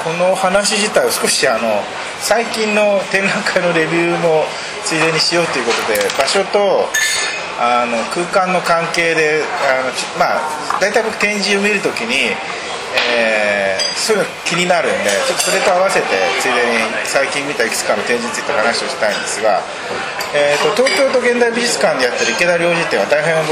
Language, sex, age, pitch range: Japanese, male, 40-59, 155-205 Hz